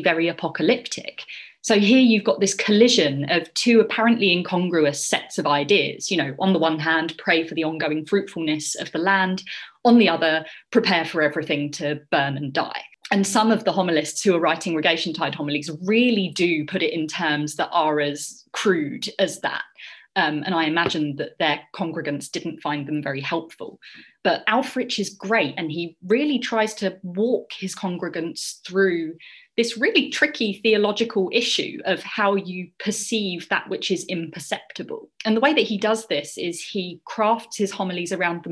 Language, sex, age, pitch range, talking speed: English, female, 30-49, 160-210 Hz, 180 wpm